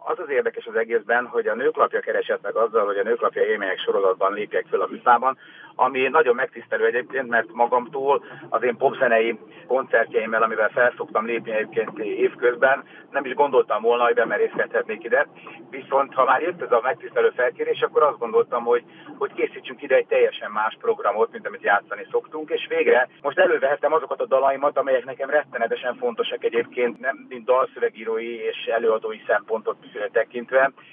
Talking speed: 160 wpm